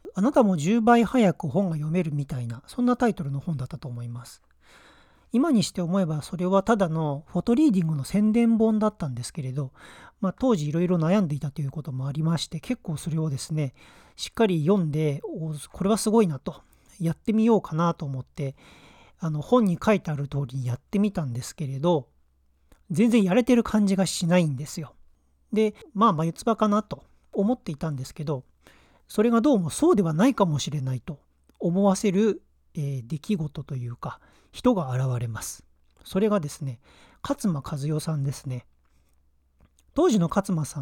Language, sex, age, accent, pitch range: Japanese, male, 40-59, native, 140-210 Hz